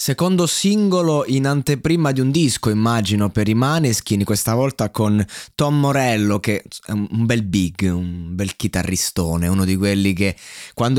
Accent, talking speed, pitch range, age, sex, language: native, 160 wpm, 110-150 Hz, 20-39, male, Italian